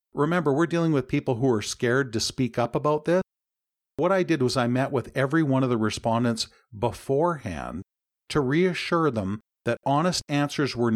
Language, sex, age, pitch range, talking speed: English, male, 50-69, 110-145 Hz, 180 wpm